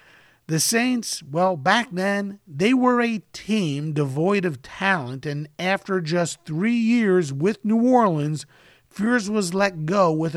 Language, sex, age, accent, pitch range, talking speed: English, male, 50-69, American, 155-215 Hz, 145 wpm